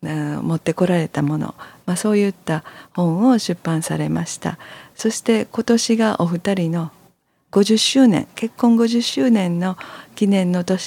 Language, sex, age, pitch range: Japanese, female, 50-69, 155-200 Hz